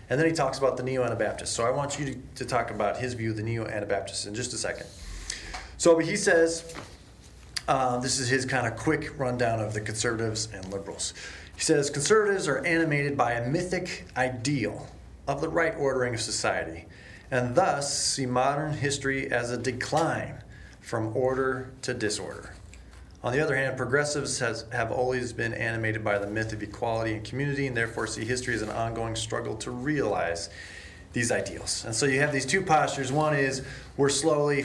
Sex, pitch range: male, 110-140 Hz